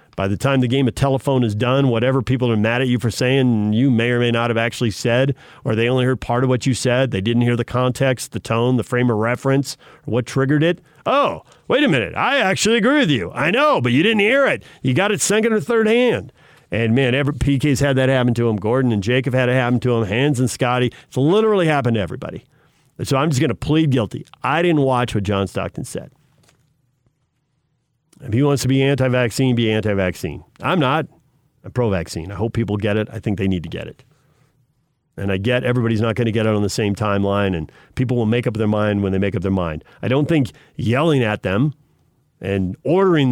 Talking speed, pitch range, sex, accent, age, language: 230 wpm, 110-140 Hz, male, American, 50-69, English